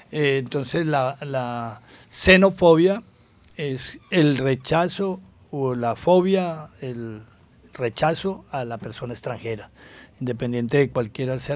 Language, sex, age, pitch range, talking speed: Spanish, male, 60-79, 125-155 Hz, 105 wpm